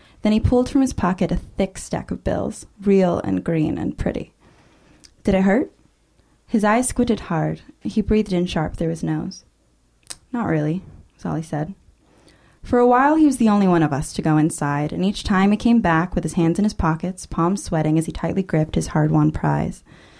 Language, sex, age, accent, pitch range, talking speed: English, female, 20-39, American, 160-205 Hz, 210 wpm